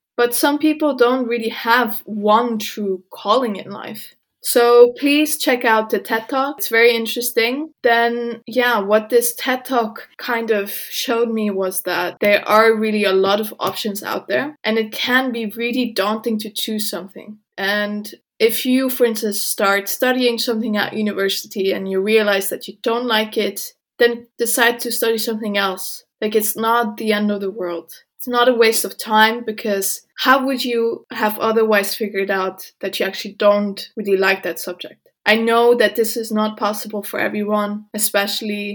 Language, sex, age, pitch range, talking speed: English, female, 20-39, 205-235 Hz, 175 wpm